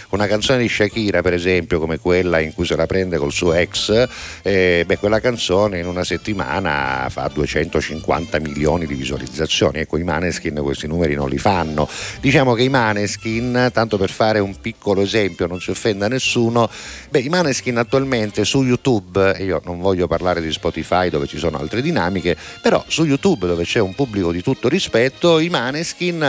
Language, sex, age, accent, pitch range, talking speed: Italian, male, 50-69, native, 90-125 Hz, 185 wpm